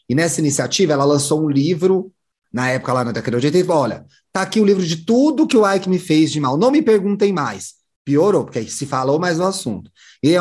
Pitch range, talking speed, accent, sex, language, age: 130-170 Hz, 260 wpm, Brazilian, male, Portuguese, 30-49